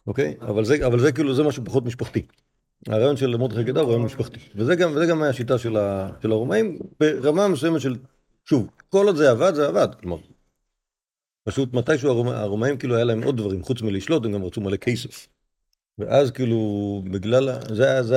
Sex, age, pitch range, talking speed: male, 50-69, 105-135 Hz, 190 wpm